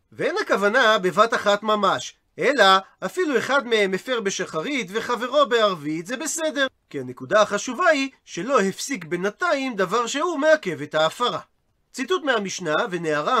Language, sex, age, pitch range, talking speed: Hebrew, male, 40-59, 190-270 Hz, 135 wpm